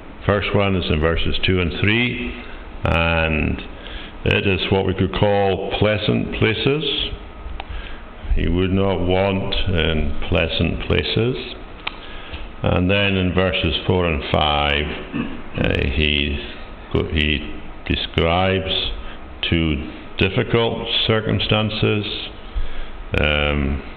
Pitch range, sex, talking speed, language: 75-95 Hz, male, 95 wpm, English